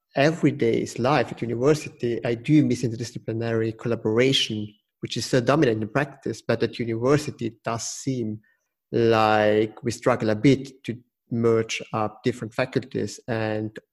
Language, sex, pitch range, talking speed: English, male, 110-125 Hz, 140 wpm